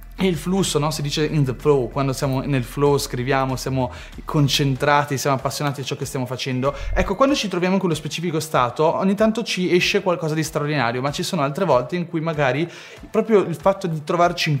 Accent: native